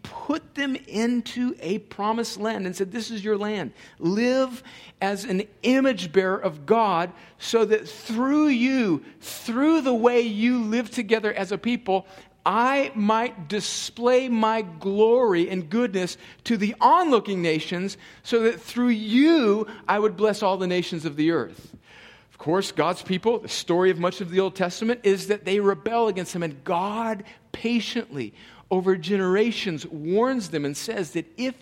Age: 50-69